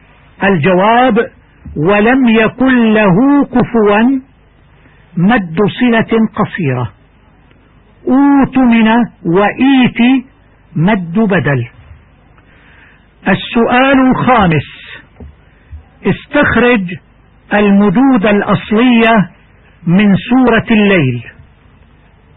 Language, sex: Arabic, male